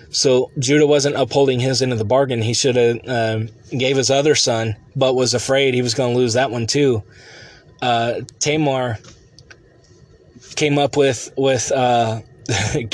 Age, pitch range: 20-39, 115-140 Hz